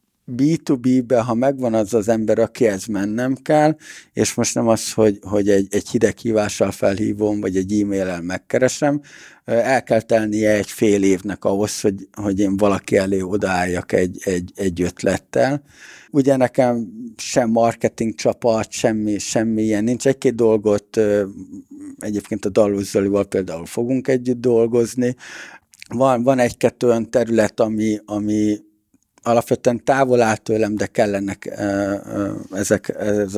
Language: Hungarian